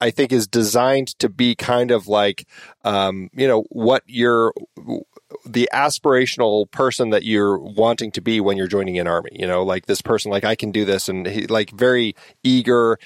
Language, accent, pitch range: English, American, 100-120 Hz